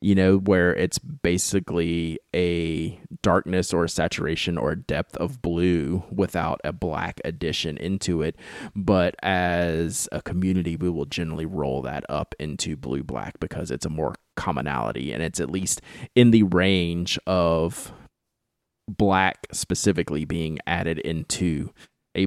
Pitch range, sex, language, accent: 80-95 Hz, male, English, American